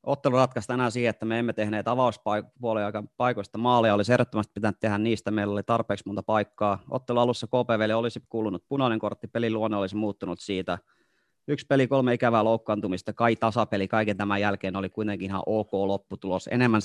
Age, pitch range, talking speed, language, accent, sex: 30-49, 105-120 Hz, 175 wpm, Finnish, native, male